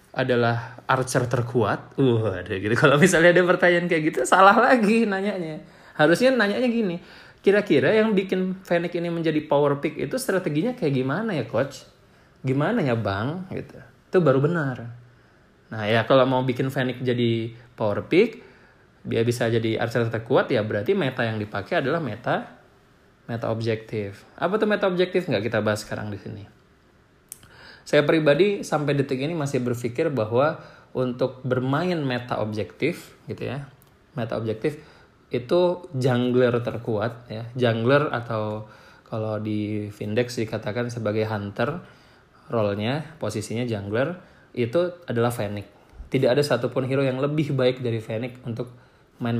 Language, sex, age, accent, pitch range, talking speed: English, male, 20-39, Indonesian, 115-150 Hz, 140 wpm